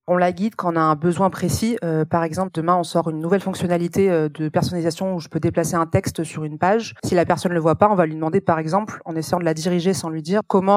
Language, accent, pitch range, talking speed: French, French, 165-190 Hz, 285 wpm